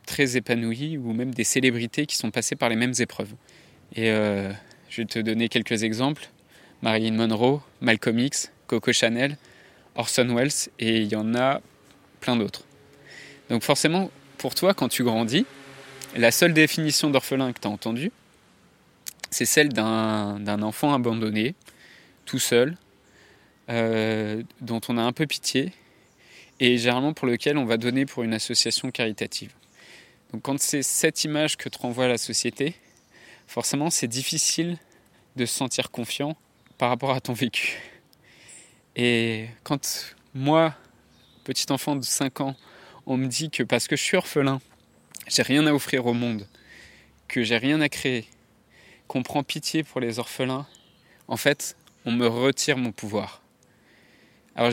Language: French